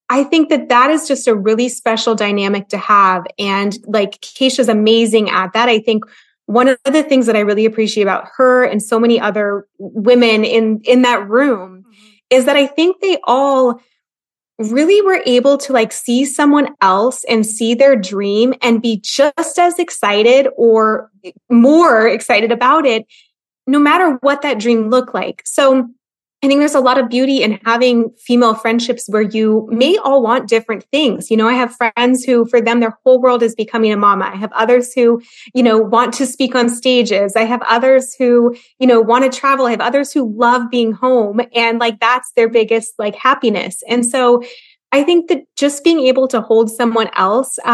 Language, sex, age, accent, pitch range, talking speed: English, female, 20-39, American, 220-260 Hz, 195 wpm